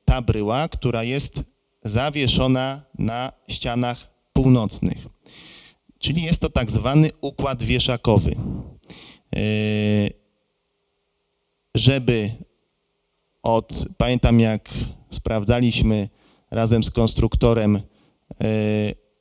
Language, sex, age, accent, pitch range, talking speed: Polish, male, 30-49, native, 105-125 Hz, 70 wpm